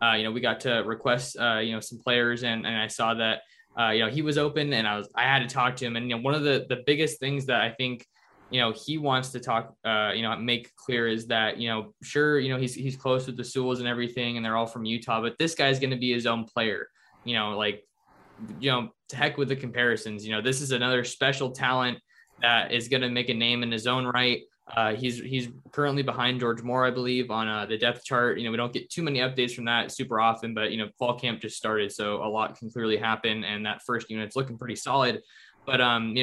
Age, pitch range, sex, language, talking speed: 20-39, 115-130 Hz, male, English, 270 wpm